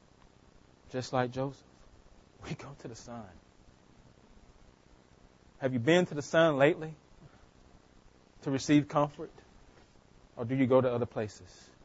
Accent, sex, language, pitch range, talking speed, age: American, male, English, 120-200 Hz, 125 wpm, 30-49